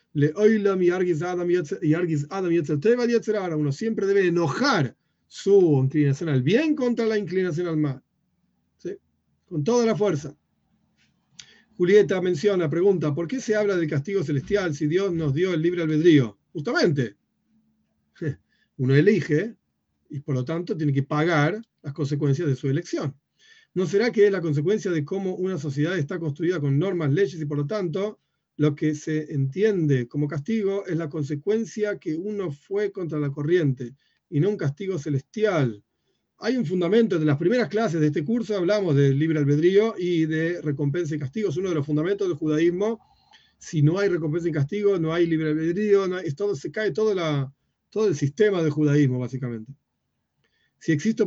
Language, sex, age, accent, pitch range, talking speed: Spanish, male, 40-59, Argentinian, 150-200 Hz, 165 wpm